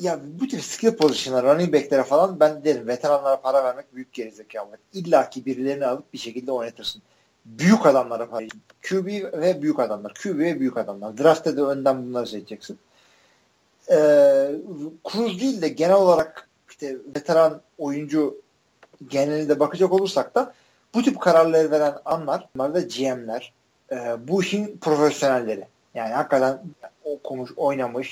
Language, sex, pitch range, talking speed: Turkish, male, 130-180 Hz, 145 wpm